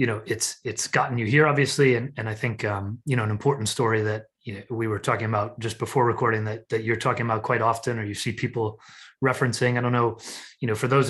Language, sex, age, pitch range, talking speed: English, male, 30-49, 110-125 Hz, 255 wpm